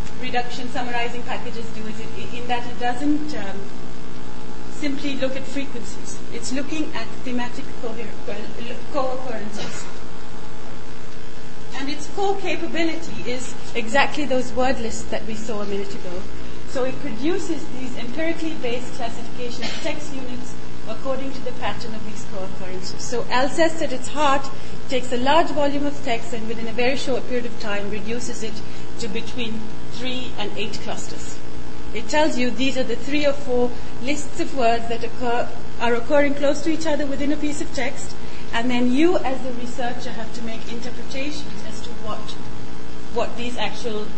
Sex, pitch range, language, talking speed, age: female, 210-280 Hz, English, 165 wpm, 30-49